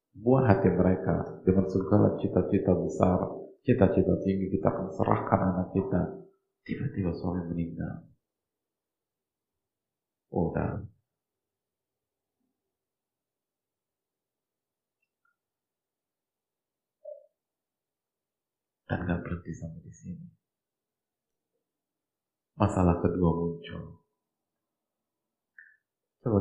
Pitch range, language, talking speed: 85-110 Hz, Indonesian, 65 wpm